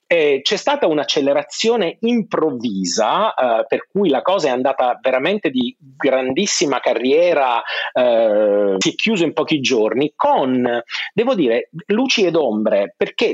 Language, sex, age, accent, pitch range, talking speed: Italian, male, 40-59, native, 140-210 Hz, 135 wpm